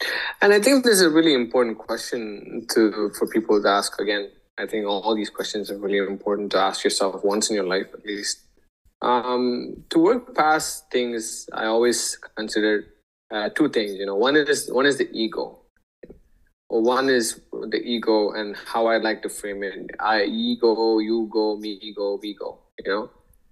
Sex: male